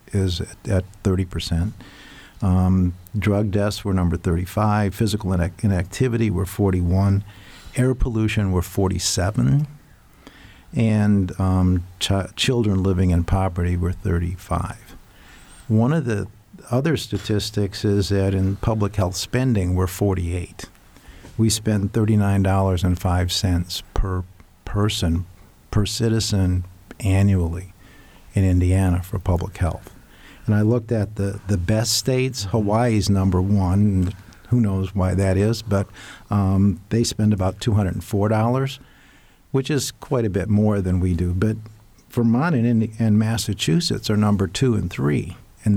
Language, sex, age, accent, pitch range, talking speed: English, male, 50-69, American, 95-110 Hz, 120 wpm